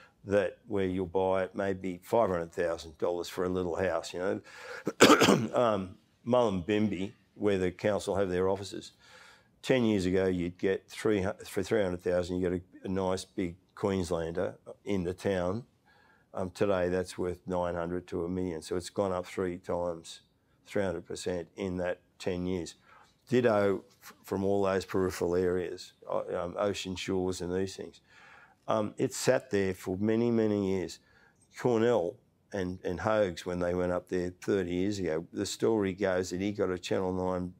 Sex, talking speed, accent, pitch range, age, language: male, 155 wpm, Australian, 90-100 Hz, 50-69, English